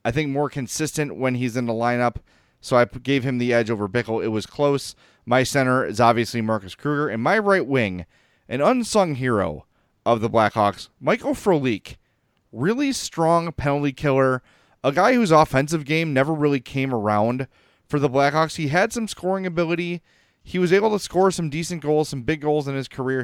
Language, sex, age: English, male, 30-49